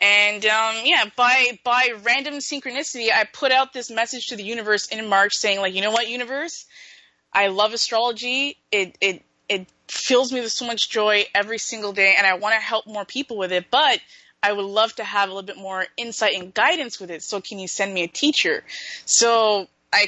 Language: English